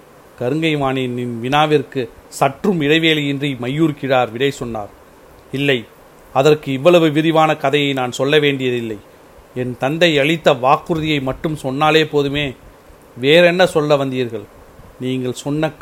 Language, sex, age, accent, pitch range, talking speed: Tamil, male, 40-59, native, 130-165 Hz, 100 wpm